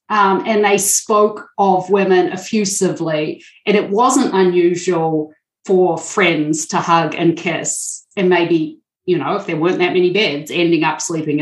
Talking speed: 160 wpm